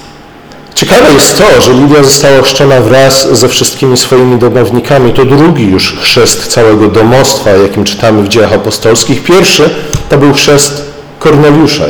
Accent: native